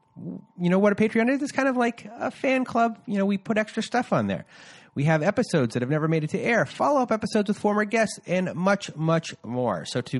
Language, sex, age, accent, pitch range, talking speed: English, male, 30-49, American, 130-205 Hz, 245 wpm